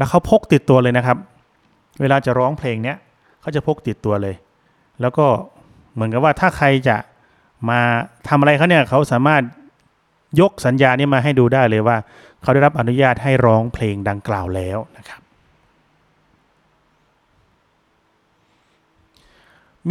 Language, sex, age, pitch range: Thai, male, 30-49, 110-145 Hz